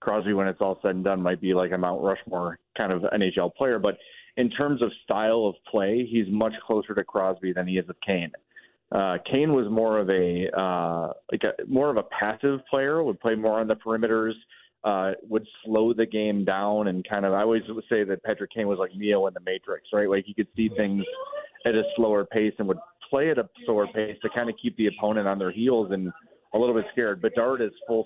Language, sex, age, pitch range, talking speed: English, male, 30-49, 95-110 Hz, 235 wpm